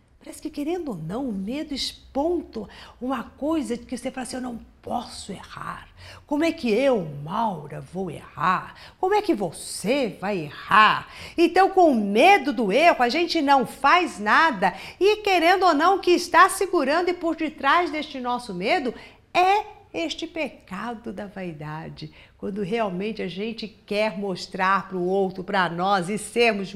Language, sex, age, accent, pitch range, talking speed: Portuguese, female, 50-69, Brazilian, 185-290 Hz, 165 wpm